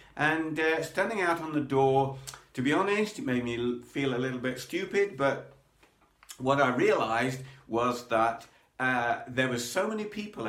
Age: 50-69